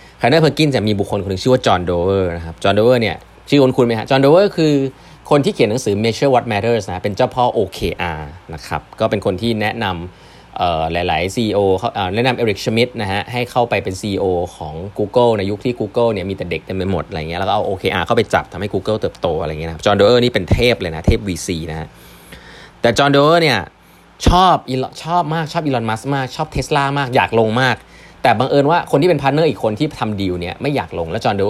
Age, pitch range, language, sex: 20-39, 95-130 Hz, Thai, male